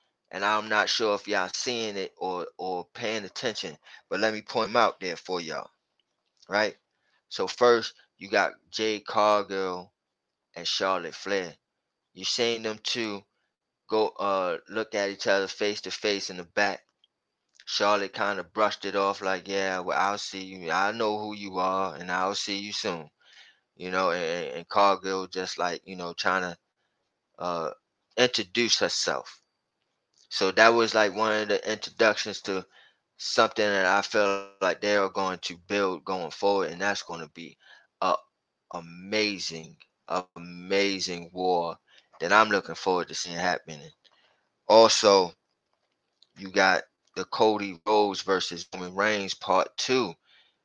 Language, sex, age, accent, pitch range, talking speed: English, male, 20-39, American, 95-110 Hz, 155 wpm